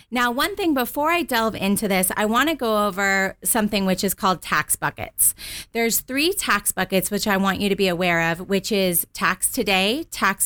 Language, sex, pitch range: English, female, 175-225 Hz